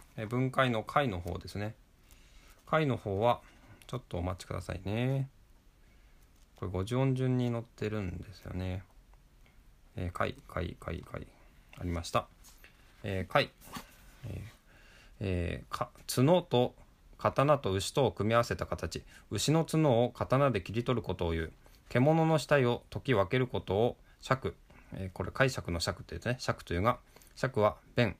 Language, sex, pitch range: Japanese, male, 95-125 Hz